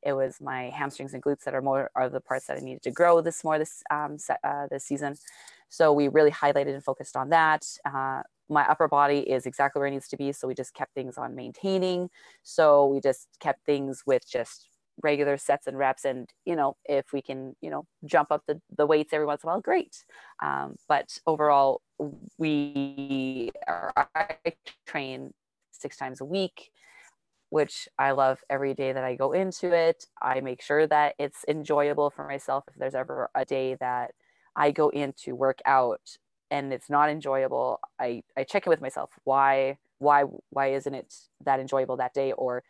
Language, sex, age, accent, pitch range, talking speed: English, female, 20-39, American, 130-150 Hz, 200 wpm